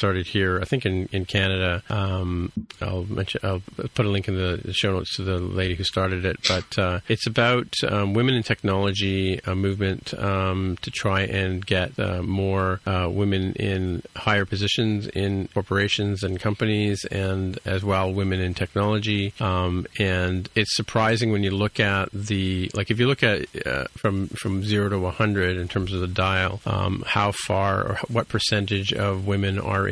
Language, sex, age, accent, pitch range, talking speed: English, male, 40-59, American, 95-105 Hz, 180 wpm